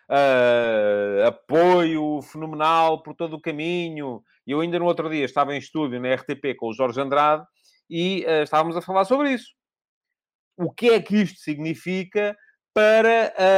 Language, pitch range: English, 155-220 Hz